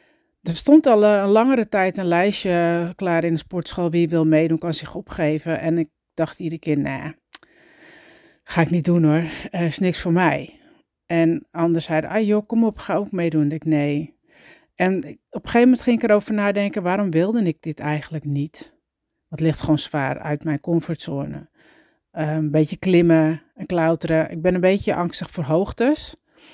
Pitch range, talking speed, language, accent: 160-210 Hz, 185 wpm, Dutch, Dutch